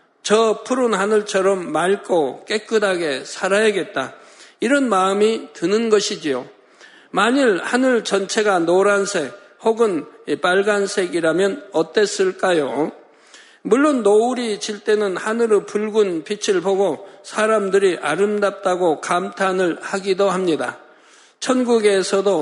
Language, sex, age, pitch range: Korean, male, 50-69, 195-220 Hz